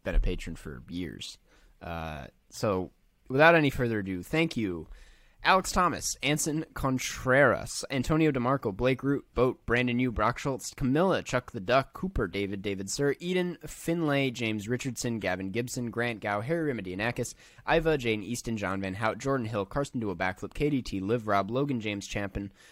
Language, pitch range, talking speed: English, 100-140 Hz, 165 wpm